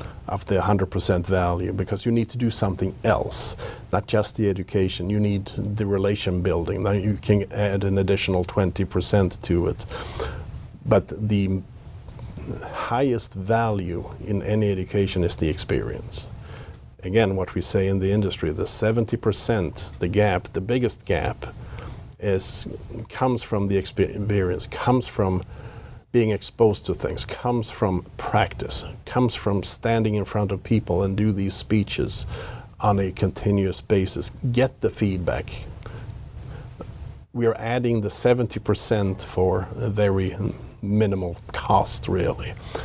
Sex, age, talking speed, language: male, 50-69, 135 wpm, English